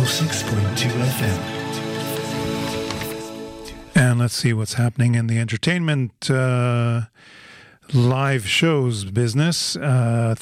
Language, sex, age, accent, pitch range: English, male, 50-69, American, 115-140 Hz